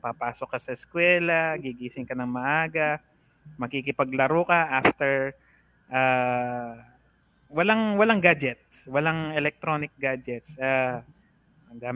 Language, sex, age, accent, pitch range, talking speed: Filipino, male, 20-39, native, 125-155 Hz, 100 wpm